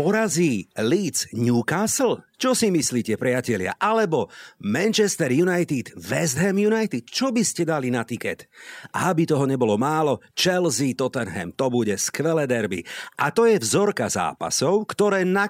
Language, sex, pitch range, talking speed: Slovak, male, 125-200 Hz, 145 wpm